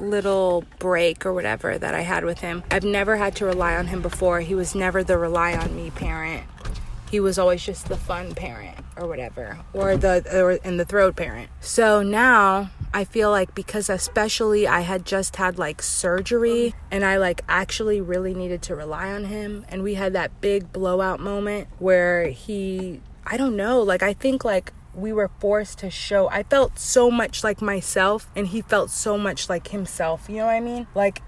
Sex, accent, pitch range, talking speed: female, American, 180-215 Hz, 200 wpm